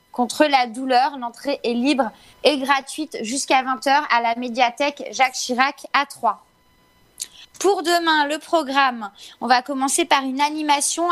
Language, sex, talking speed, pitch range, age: French, female, 145 wpm, 245-300 Hz, 20-39